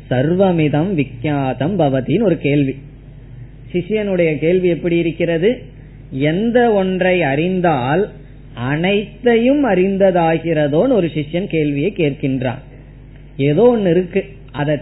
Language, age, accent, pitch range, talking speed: Tamil, 20-39, native, 140-180 Hz, 70 wpm